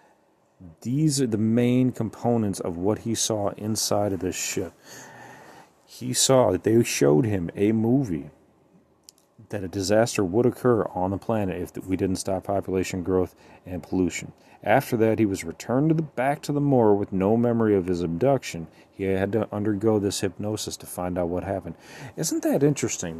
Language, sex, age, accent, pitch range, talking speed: English, male, 40-59, American, 90-115 Hz, 175 wpm